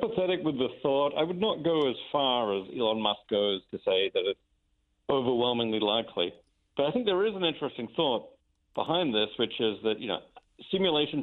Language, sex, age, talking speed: English, male, 40-59, 185 wpm